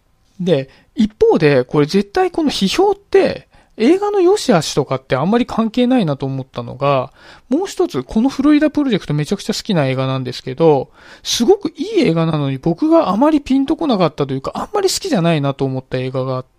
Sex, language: male, Japanese